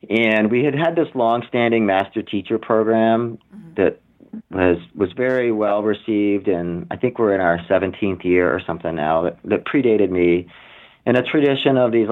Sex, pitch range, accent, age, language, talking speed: male, 90-115 Hz, American, 40-59, English, 175 wpm